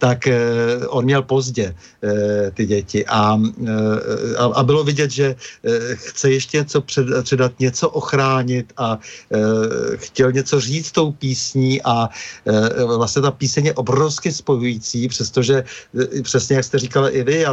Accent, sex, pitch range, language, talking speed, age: native, male, 120-140 Hz, Czech, 130 wpm, 50-69